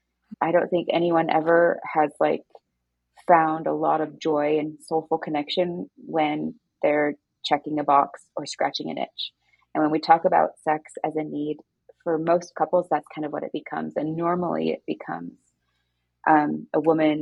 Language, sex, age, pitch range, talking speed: English, female, 20-39, 145-165 Hz, 170 wpm